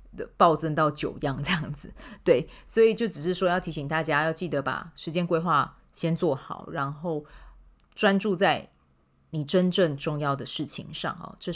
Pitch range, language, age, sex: 145-180 Hz, Chinese, 30-49, female